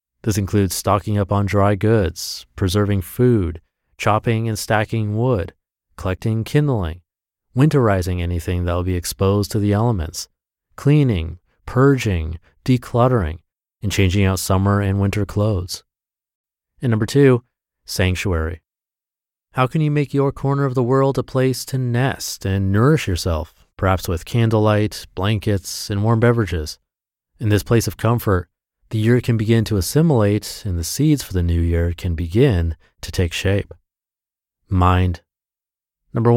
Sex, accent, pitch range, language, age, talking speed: male, American, 90-120 Hz, English, 30-49, 140 wpm